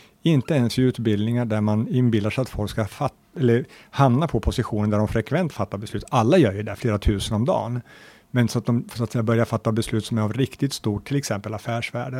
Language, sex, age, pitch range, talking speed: Swedish, male, 50-69, 110-135 Hz, 230 wpm